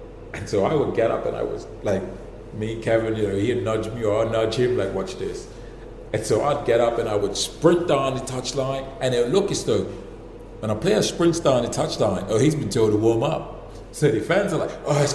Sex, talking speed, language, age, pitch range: male, 245 wpm, English, 40-59, 145-180 Hz